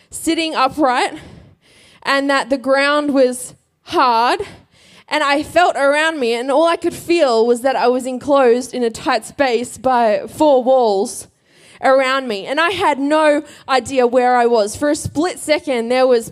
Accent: Australian